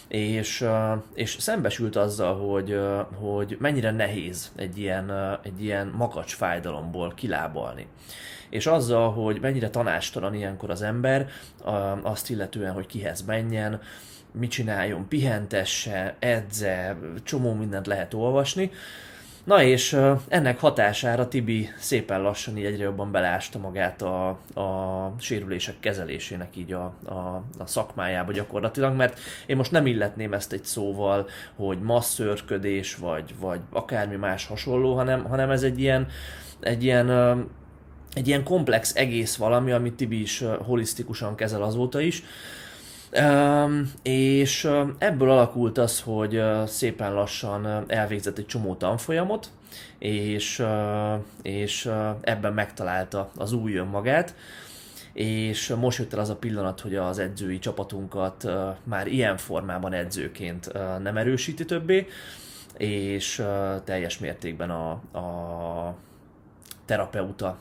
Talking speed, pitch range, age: 120 wpm, 95-120 Hz, 20-39